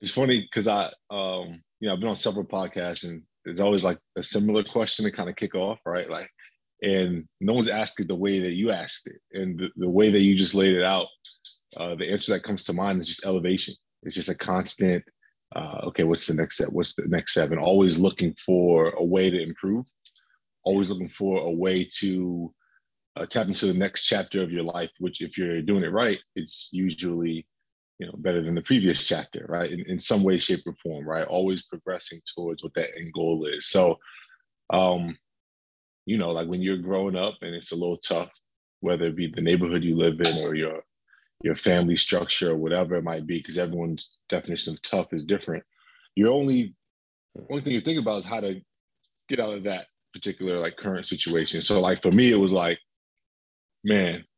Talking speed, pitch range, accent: 210 wpm, 85-95 Hz, American